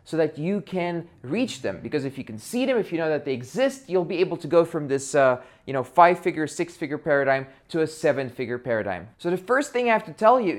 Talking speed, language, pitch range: 250 wpm, English, 135-180 Hz